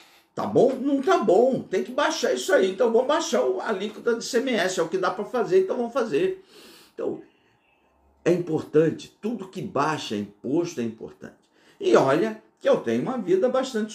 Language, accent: Portuguese, Brazilian